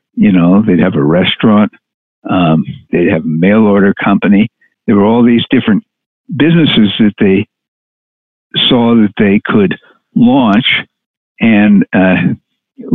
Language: English